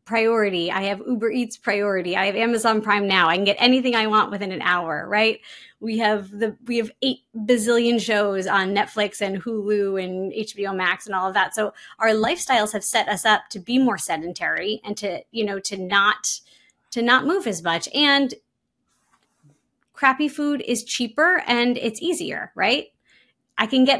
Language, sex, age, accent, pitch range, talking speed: English, female, 20-39, American, 200-250 Hz, 185 wpm